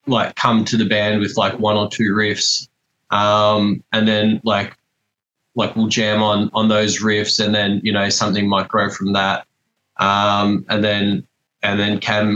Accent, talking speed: Australian, 180 wpm